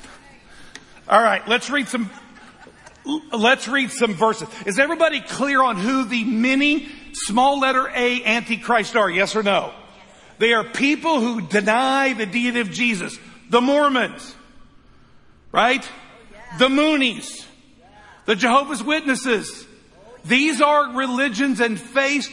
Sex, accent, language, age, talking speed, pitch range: male, American, English, 50-69, 120 wpm, 215-270 Hz